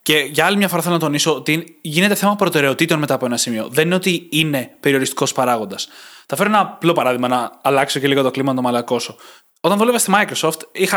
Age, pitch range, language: 20-39, 135-185 Hz, Greek